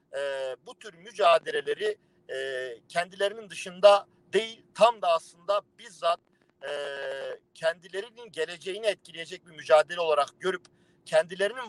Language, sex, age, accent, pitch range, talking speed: Turkish, male, 50-69, native, 150-200 Hz, 110 wpm